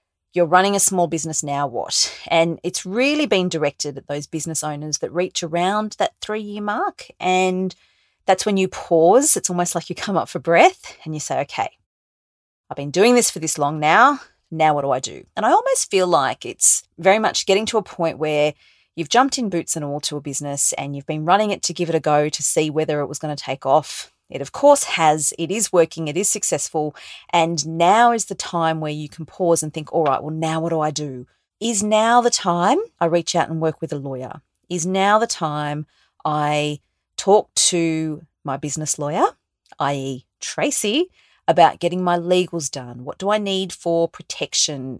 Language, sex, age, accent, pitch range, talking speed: English, female, 30-49, Australian, 150-190 Hz, 210 wpm